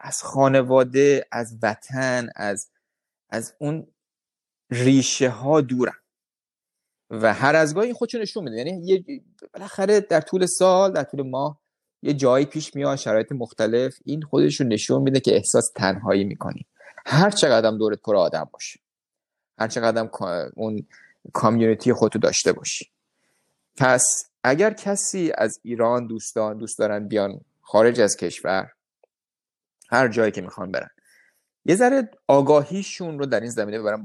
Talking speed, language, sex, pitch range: 135 wpm, Persian, male, 115-160 Hz